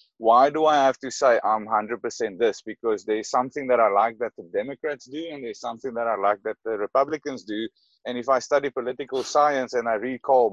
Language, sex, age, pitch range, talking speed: English, male, 30-49, 125-165 Hz, 220 wpm